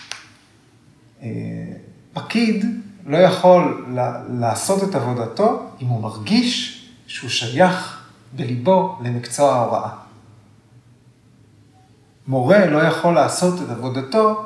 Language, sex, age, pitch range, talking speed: Hebrew, male, 40-59, 120-160 Hz, 90 wpm